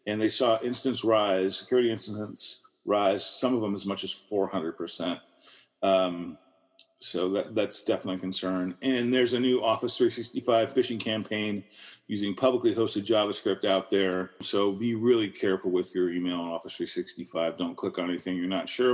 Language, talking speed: English, 165 wpm